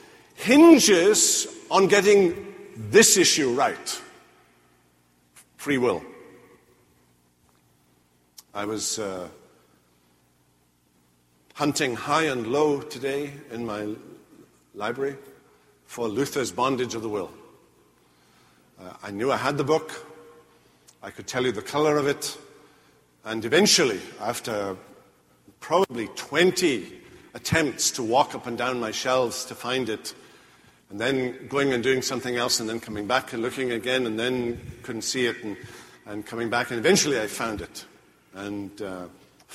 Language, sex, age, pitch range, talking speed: English, male, 50-69, 100-135 Hz, 130 wpm